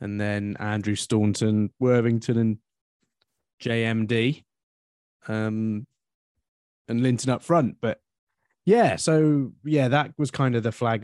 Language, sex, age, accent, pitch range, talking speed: English, male, 20-39, British, 100-120 Hz, 120 wpm